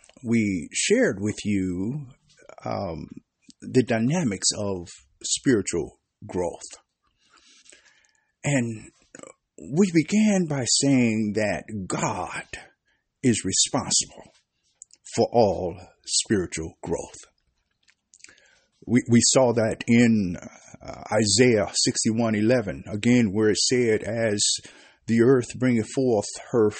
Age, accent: 50-69, American